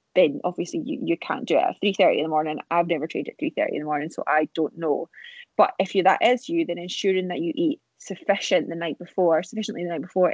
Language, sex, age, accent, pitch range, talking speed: English, female, 20-39, British, 170-200 Hz, 260 wpm